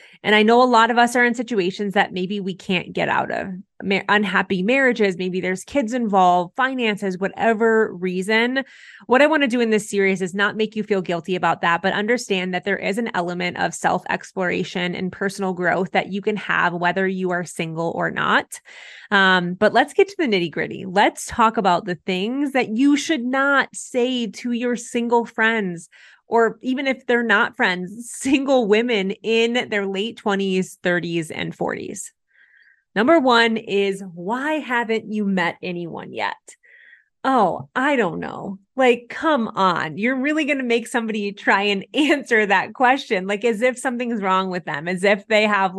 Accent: American